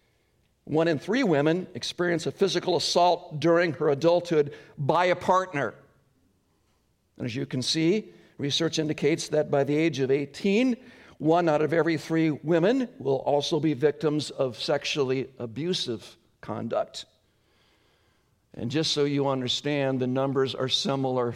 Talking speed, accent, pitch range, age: 140 wpm, American, 135-175 Hz, 60-79